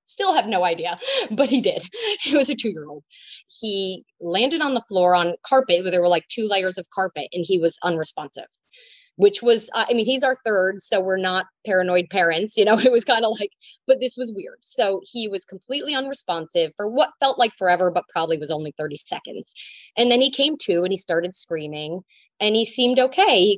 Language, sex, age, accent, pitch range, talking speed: English, female, 20-39, American, 175-240 Hz, 215 wpm